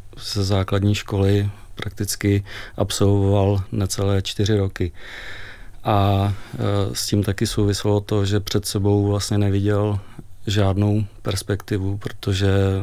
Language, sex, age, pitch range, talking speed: Czech, male, 40-59, 100-105 Hz, 105 wpm